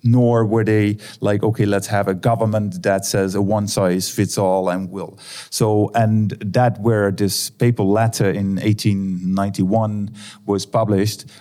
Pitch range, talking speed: 100-120 Hz, 135 wpm